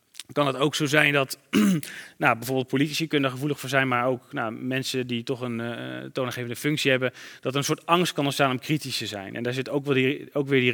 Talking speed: 245 wpm